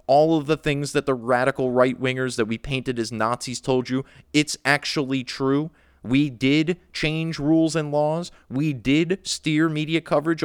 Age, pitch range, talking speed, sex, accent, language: 30-49, 120-150 Hz, 165 wpm, male, American, English